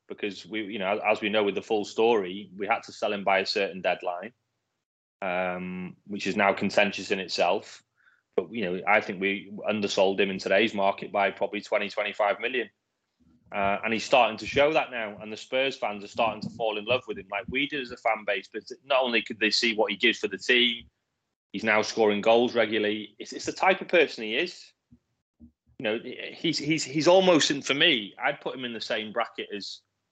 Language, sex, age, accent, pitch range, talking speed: English, male, 20-39, British, 105-125 Hz, 225 wpm